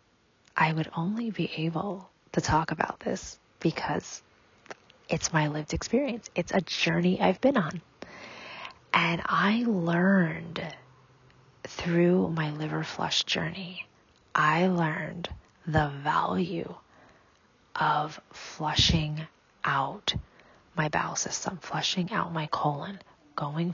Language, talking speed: English, 110 wpm